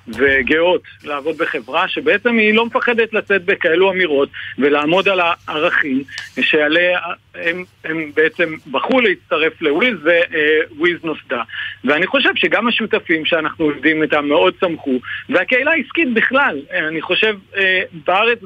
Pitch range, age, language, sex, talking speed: 160-220 Hz, 50-69, Hebrew, male, 120 wpm